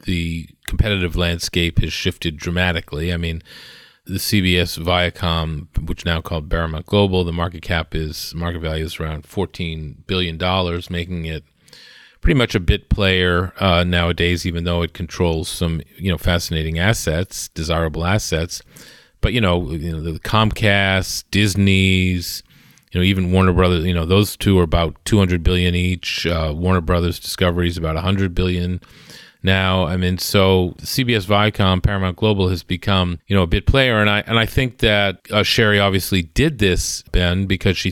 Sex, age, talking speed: male, 40-59, 165 wpm